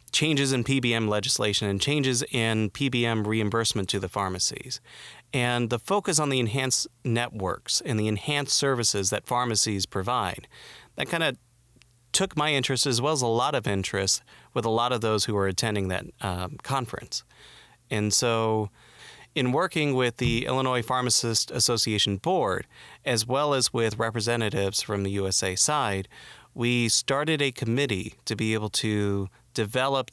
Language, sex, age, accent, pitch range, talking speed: English, male, 30-49, American, 105-130 Hz, 155 wpm